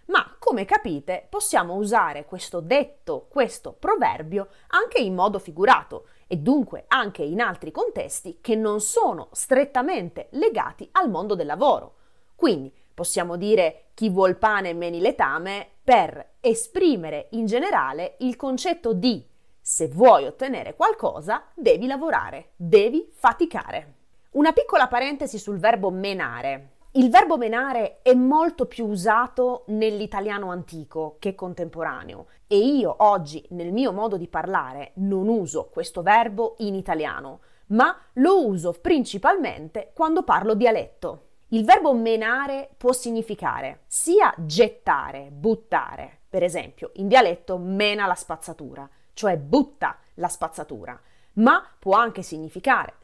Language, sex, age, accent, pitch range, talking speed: Italian, female, 30-49, native, 185-280 Hz, 125 wpm